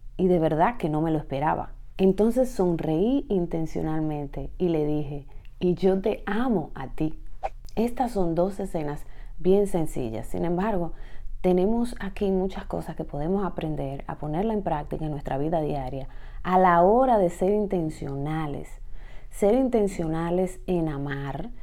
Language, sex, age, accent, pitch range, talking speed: Spanish, female, 30-49, American, 145-180 Hz, 145 wpm